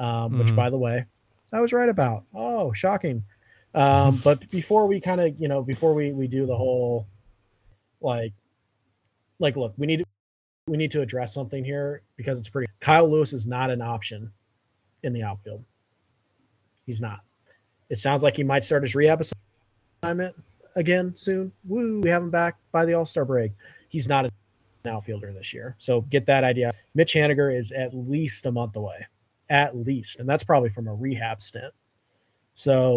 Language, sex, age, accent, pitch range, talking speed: English, male, 20-39, American, 110-145 Hz, 180 wpm